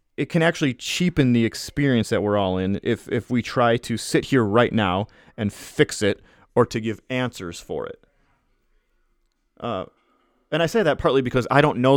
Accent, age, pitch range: American, 30-49, 105-135 Hz